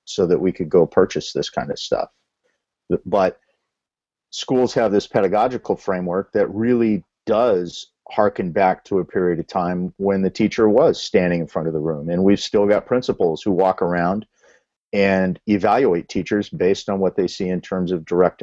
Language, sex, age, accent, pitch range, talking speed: English, male, 50-69, American, 90-110 Hz, 180 wpm